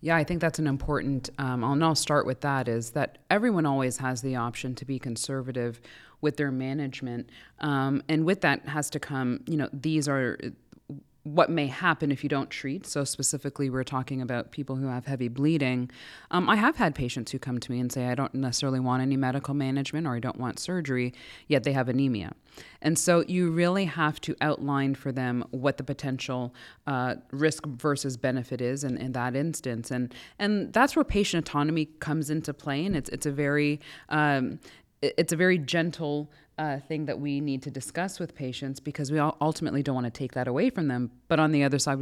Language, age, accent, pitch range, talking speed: English, 20-39, American, 130-155 Hz, 205 wpm